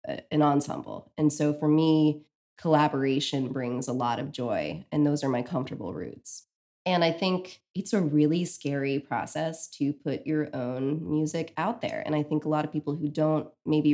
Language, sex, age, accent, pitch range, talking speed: English, female, 20-39, American, 145-175 Hz, 185 wpm